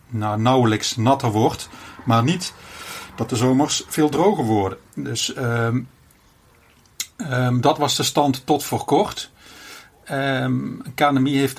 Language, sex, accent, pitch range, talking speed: Dutch, male, Dutch, 115-140 Hz, 130 wpm